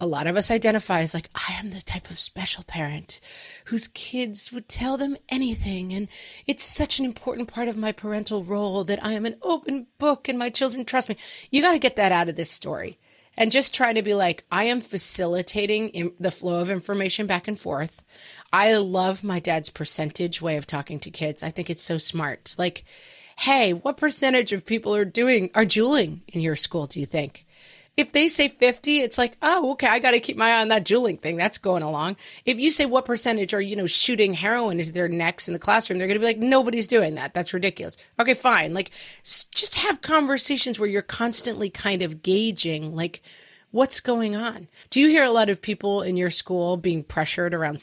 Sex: female